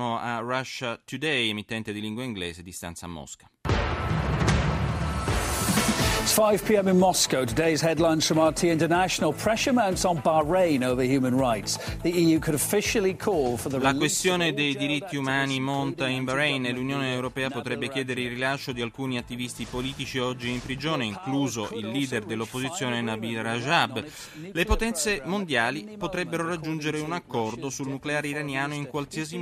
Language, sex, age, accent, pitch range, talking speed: Italian, male, 30-49, native, 120-155 Hz, 105 wpm